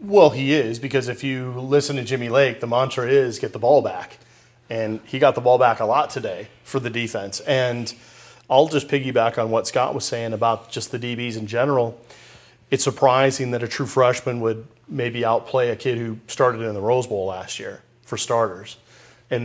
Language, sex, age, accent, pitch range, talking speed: English, male, 30-49, American, 115-135 Hz, 205 wpm